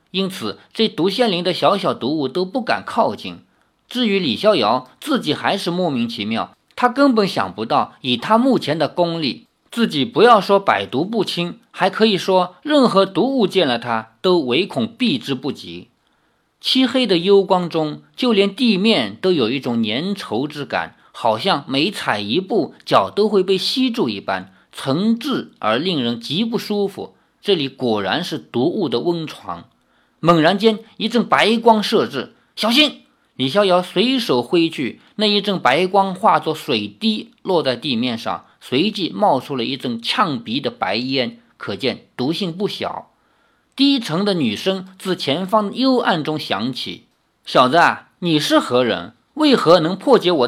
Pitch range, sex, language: 160-230 Hz, male, Chinese